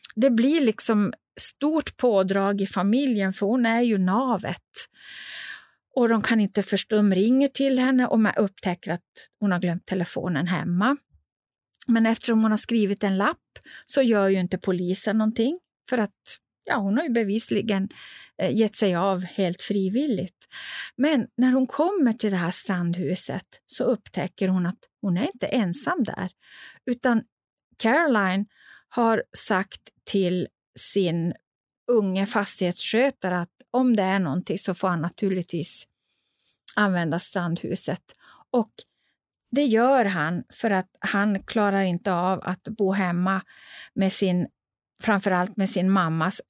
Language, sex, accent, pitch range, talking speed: Swedish, female, native, 185-240 Hz, 140 wpm